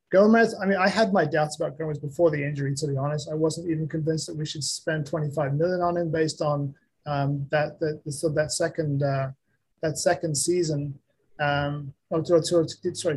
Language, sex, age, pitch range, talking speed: English, male, 30-49, 150-170 Hz, 190 wpm